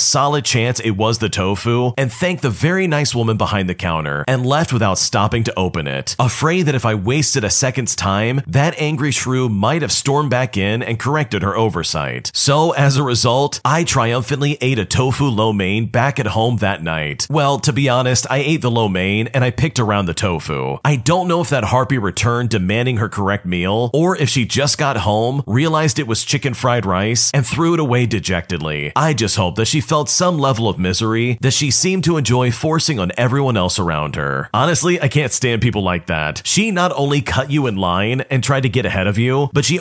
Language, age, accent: English, 40-59, American